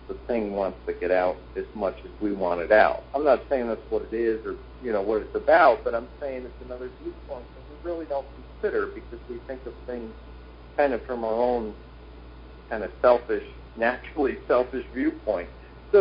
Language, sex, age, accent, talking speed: English, male, 50-69, American, 200 wpm